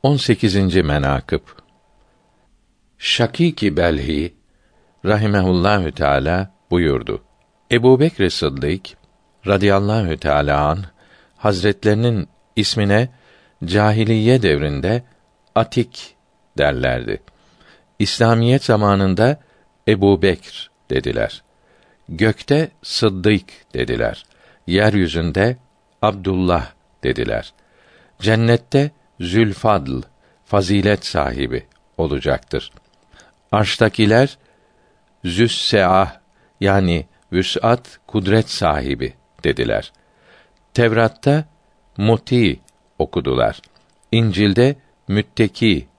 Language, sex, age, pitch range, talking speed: Turkish, male, 50-69, 95-115 Hz, 55 wpm